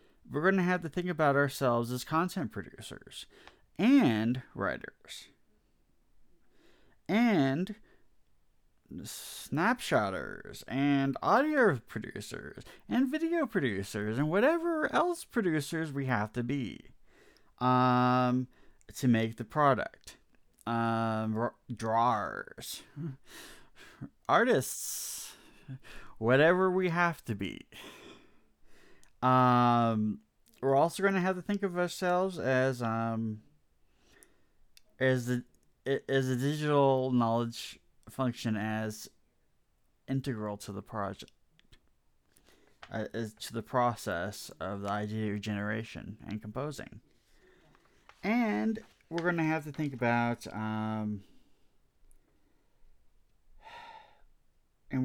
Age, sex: 30-49, male